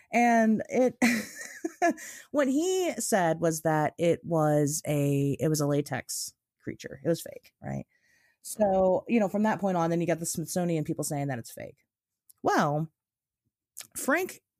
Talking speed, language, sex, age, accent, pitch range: 155 wpm, English, female, 30-49, American, 150-205 Hz